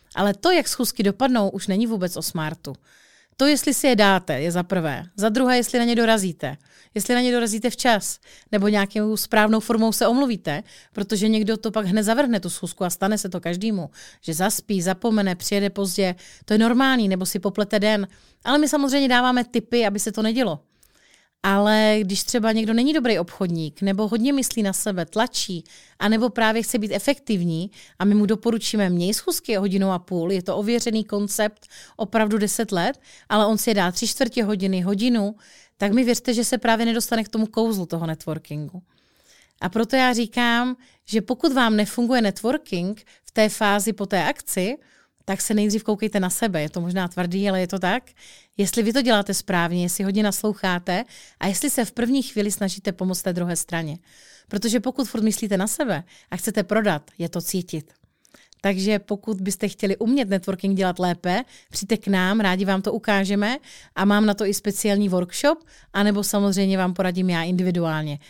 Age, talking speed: 30-49, 185 wpm